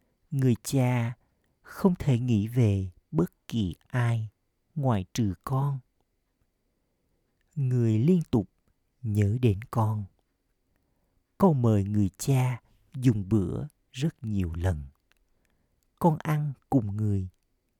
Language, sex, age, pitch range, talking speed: Vietnamese, male, 50-69, 90-130 Hz, 105 wpm